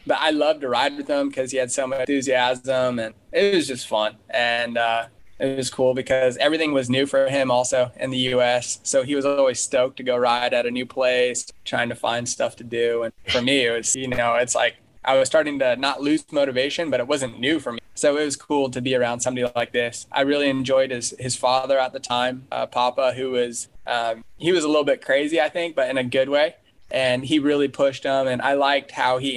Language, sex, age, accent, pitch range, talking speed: English, male, 20-39, American, 125-135 Hz, 245 wpm